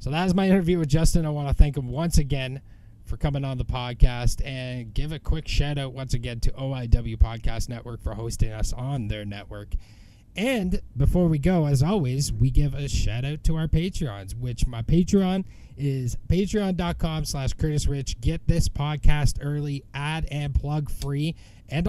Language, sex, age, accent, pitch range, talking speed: English, male, 20-39, American, 115-170 Hz, 185 wpm